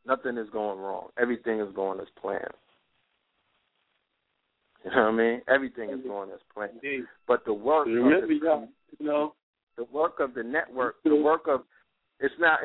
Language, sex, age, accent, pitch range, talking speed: English, male, 40-59, American, 120-165 Hz, 160 wpm